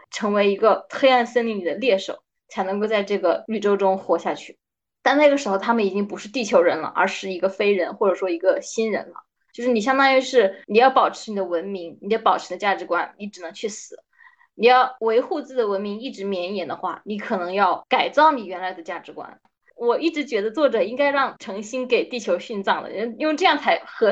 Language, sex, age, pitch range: Chinese, female, 20-39, 195-280 Hz